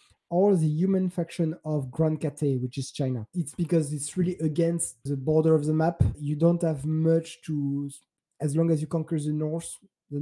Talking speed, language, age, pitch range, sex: 195 wpm, English, 20-39, 140-160 Hz, male